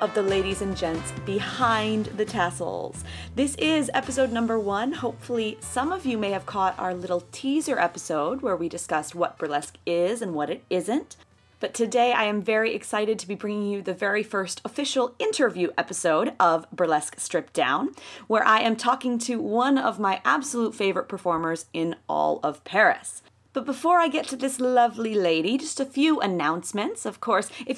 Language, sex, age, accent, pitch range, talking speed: English, female, 30-49, American, 175-255 Hz, 180 wpm